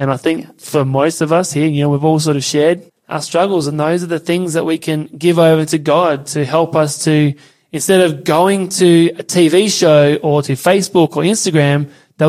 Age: 20-39